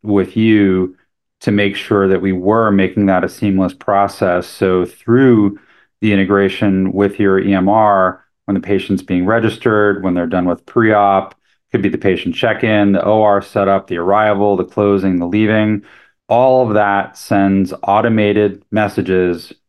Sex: male